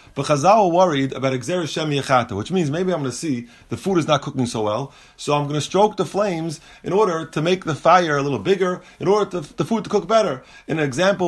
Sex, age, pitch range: male, 30-49, 140-185 Hz